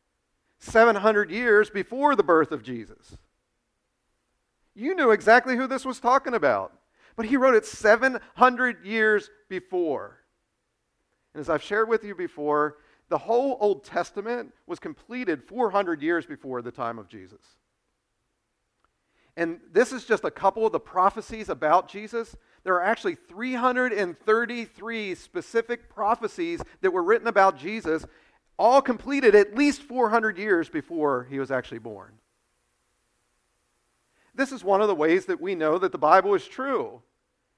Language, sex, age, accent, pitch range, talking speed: English, male, 40-59, American, 160-245 Hz, 140 wpm